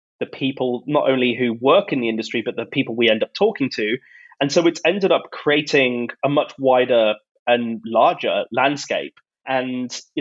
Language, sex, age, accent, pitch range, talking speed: English, male, 20-39, British, 120-155 Hz, 180 wpm